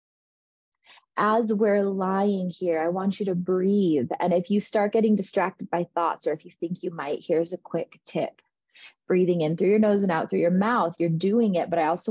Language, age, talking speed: English, 20-39, 215 wpm